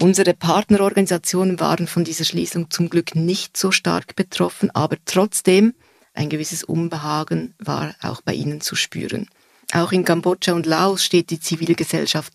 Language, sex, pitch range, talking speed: German, female, 155-175 Hz, 150 wpm